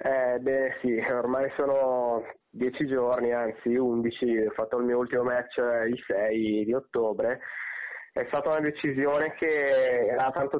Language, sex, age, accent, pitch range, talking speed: Italian, male, 20-39, native, 115-130 Hz, 145 wpm